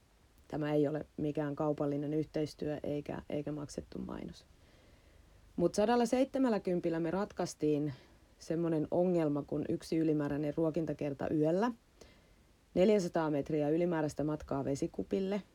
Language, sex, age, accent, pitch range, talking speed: Finnish, female, 30-49, native, 145-165 Hz, 100 wpm